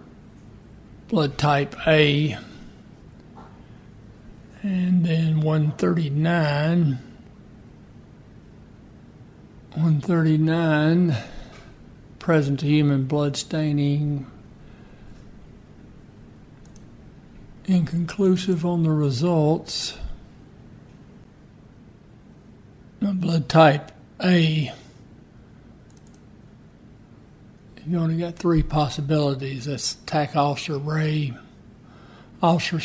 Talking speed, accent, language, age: 60 wpm, American, English, 60-79